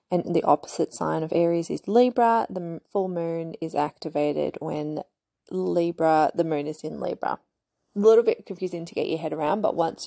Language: English